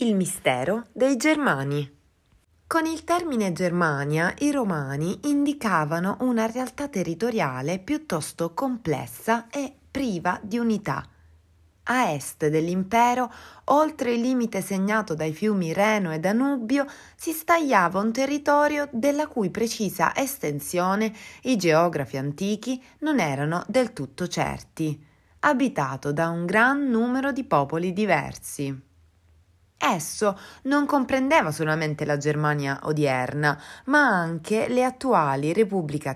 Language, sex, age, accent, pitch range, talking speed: Italian, female, 30-49, native, 150-255 Hz, 115 wpm